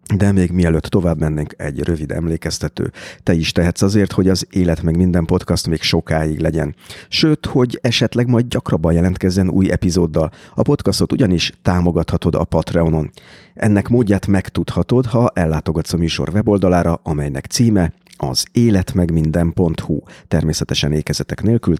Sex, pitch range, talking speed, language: male, 80-105 Hz, 145 wpm, Hungarian